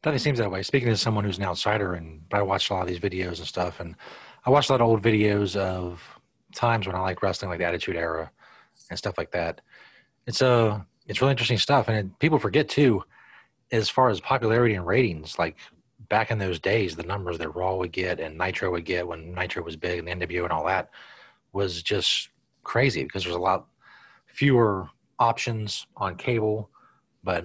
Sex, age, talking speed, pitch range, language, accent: male, 30-49, 210 wpm, 90-115 Hz, English, American